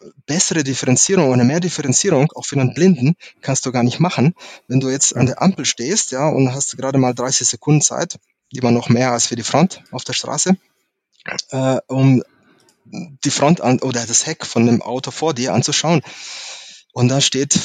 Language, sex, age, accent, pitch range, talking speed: German, male, 20-39, German, 120-135 Hz, 190 wpm